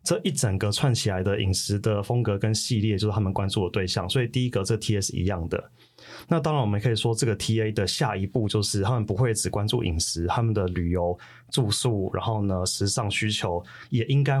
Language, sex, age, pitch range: Chinese, male, 20-39, 100-120 Hz